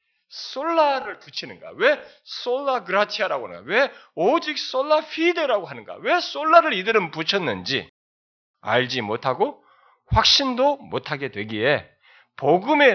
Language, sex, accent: Korean, male, native